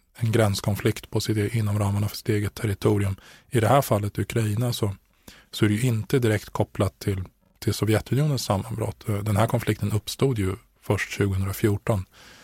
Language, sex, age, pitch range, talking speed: Swedish, male, 20-39, 100-115 Hz, 165 wpm